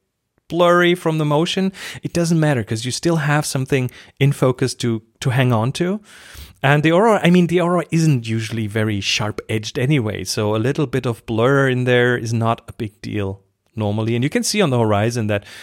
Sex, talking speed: male, 205 wpm